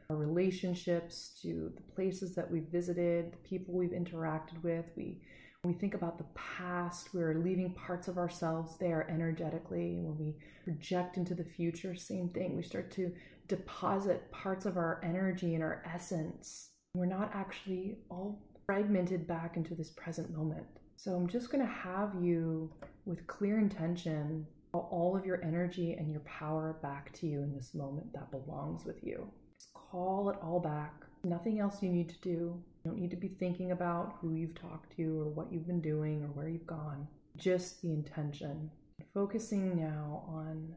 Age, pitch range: 20-39, 160-180 Hz